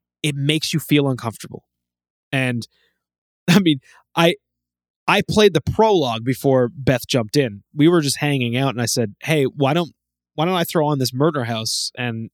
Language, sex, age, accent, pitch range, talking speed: English, male, 20-39, American, 110-150 Hz, 180 wpm